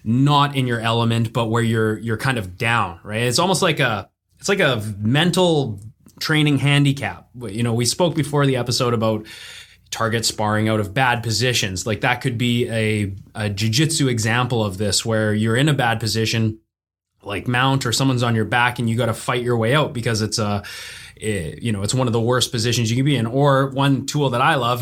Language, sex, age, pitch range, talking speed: English, male, 20-39, 115-135 Hz, 215 wpm